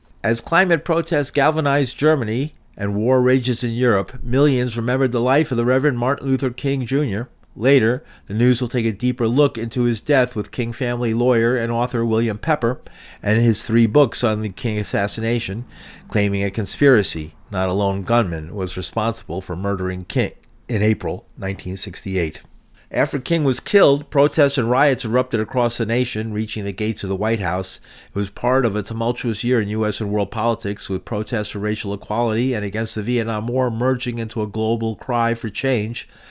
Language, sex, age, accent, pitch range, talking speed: English, male, 40-59, American, 105-125 Hz, 180 wpm